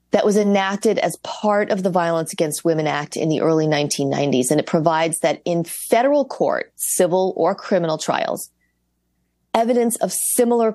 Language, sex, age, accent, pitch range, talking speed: English, female, 40-59, American, 170-215 Hz, 160 wpm